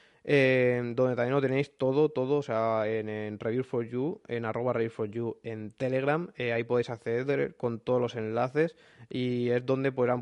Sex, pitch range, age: male, 115-130 Hz, 20-39